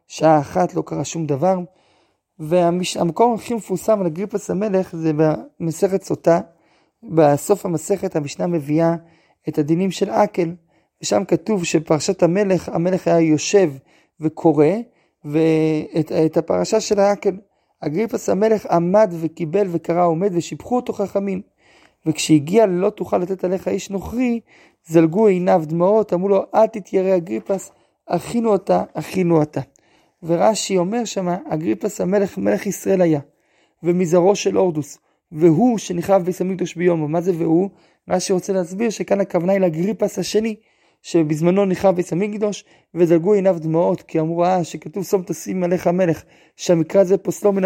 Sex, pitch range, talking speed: male, 165-200 Hz, 140 wpm